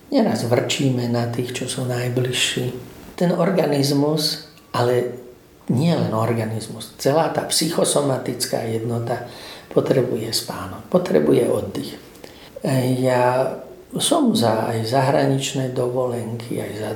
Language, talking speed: Slovak, 100 wpm